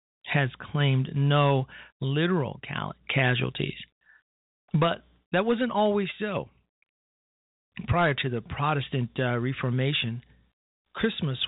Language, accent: English, American